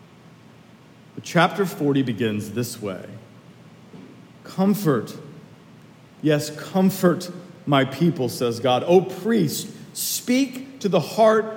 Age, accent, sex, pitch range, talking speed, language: 40-59, American, male, 130-195 Hz, 95 wpm, English